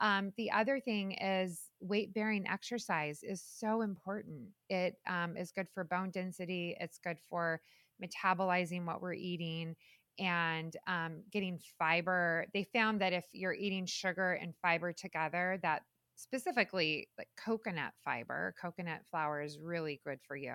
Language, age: English, 20-39